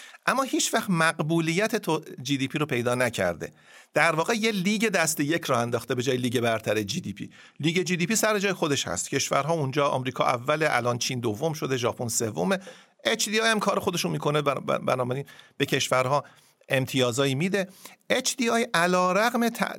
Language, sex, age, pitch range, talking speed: Persian, male, 50-69, 130-190 Hz, 190 wpm